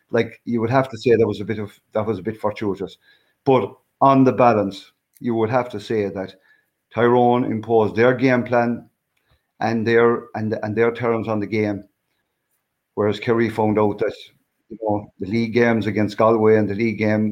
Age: 50-69